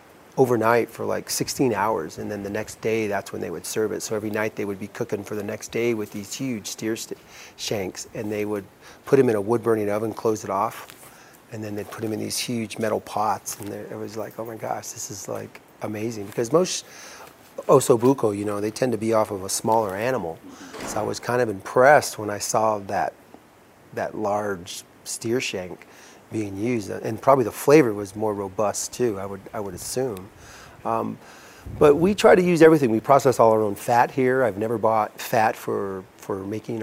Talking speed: 210 wpm